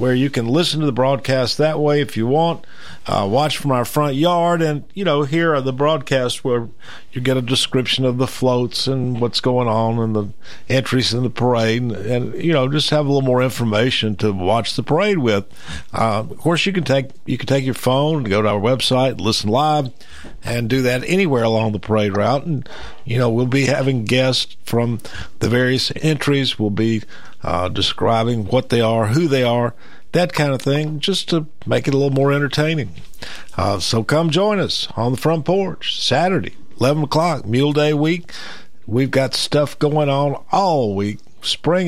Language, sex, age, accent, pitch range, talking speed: English, male, 50-69, American, 120-155 Hz, 200 wpm